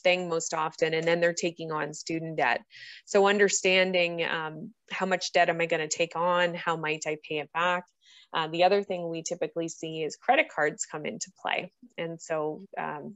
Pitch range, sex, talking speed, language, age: 160-180 Hz, female, 195 wpm, English, 20-39